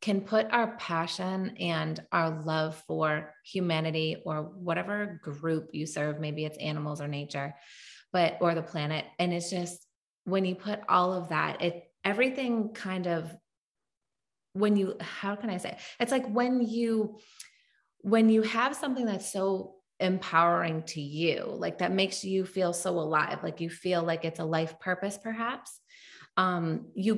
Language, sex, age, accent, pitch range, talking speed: English, female, 30-49, American, 160-195 Hz, 165 wpm